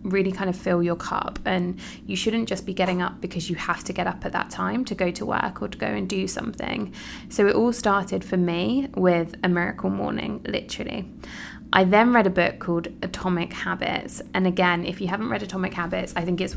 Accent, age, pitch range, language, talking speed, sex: British, 20-39, 180-210 Hz, English, 225 wpm, female